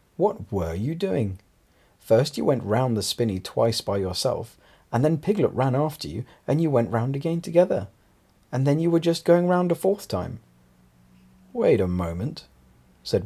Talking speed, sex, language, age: 175 wpm, male, English, 40-59